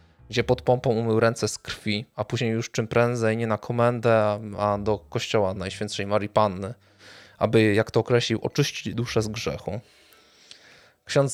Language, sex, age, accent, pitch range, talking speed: Polish, male, 20-39, native, 100-115 Hz, 160 wpm